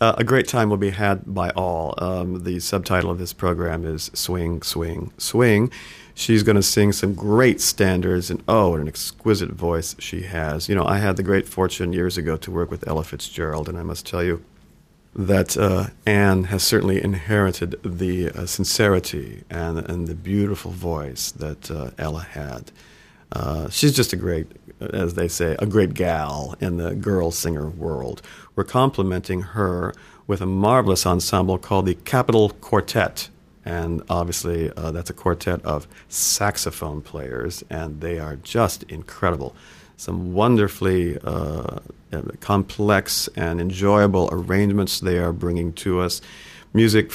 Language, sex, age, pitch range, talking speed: English, male, 50-69, 85-100 Hz, 160 wpm